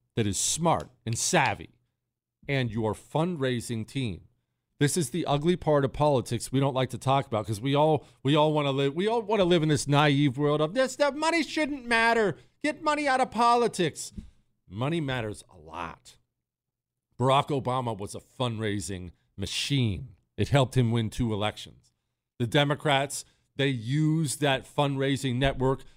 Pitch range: 120-160 Hz